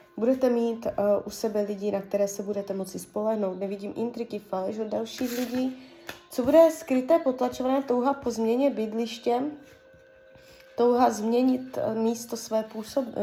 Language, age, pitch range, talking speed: Czech, 20-39, 205-275 Hz, 140 wpm